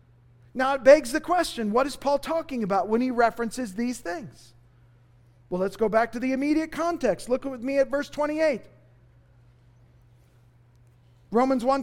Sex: male